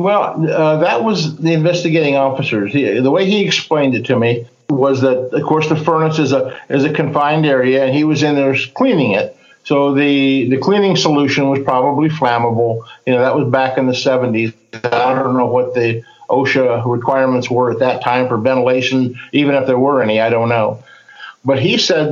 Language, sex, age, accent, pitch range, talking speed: English, male, 50-69, American, 125-150 Hz, 200 wpm